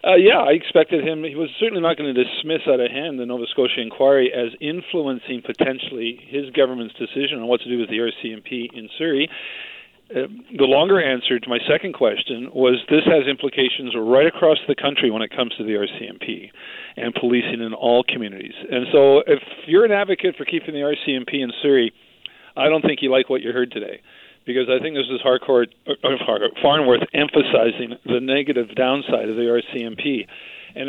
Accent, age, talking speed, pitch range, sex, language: American, 50-69, 195 wpm, 120-145 Hz, male, English